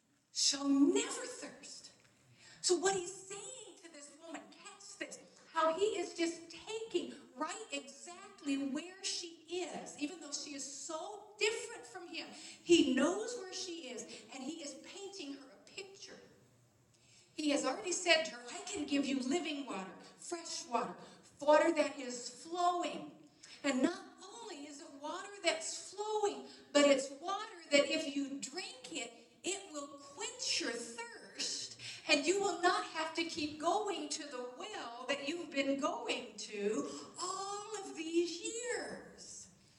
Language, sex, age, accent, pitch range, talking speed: English, female, 50-69, American, 275-370 Hz, 150 wpm